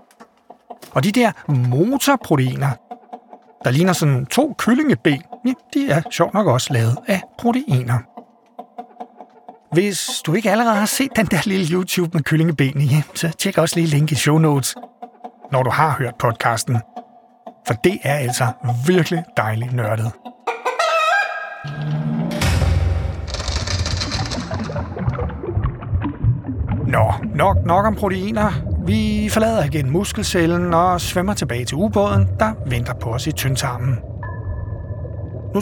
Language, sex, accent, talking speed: Danish, male, native, 120 wpm